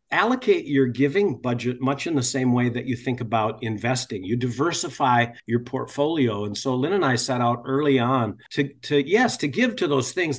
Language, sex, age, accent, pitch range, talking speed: English, male, 50-69, American, 120-150 Hz, 200 wpm